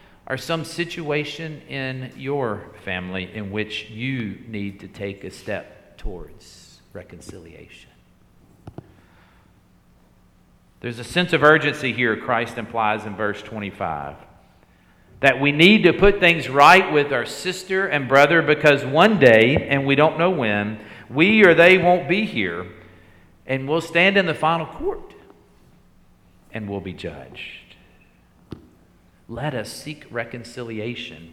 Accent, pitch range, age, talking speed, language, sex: American, 105-160 Hz, 50-69, 130 wpm, English, male